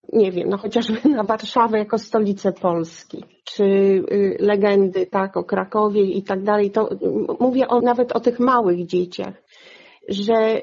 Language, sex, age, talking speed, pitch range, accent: Polish, female, 40-59, 145 wpm, 195-225 Hz, native